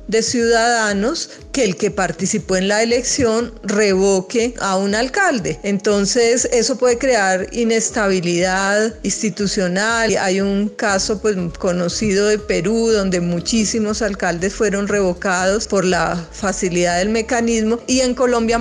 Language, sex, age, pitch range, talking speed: Spanish, female, 40-59, 195-230 Hz, 125 wpm